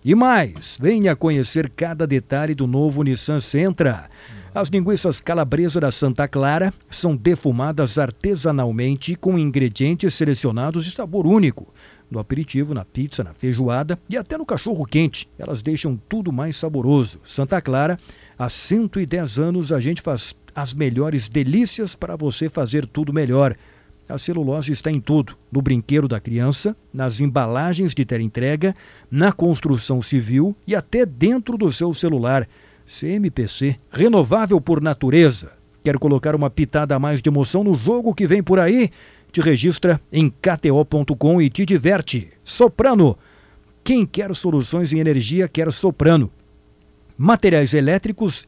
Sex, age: male, 50-69